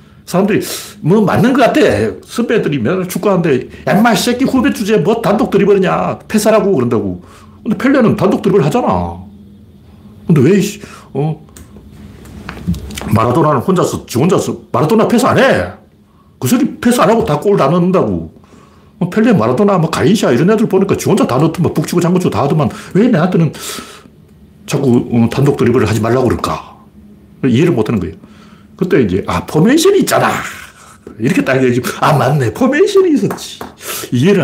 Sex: male